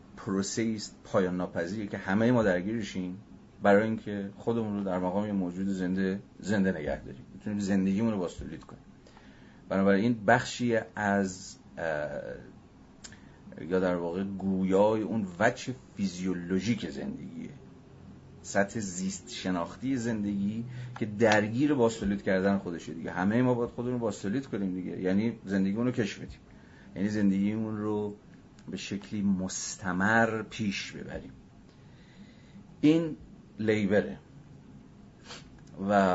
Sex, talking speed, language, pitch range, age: male, 115 wpm, Persian, 95-115 Hz, 40-59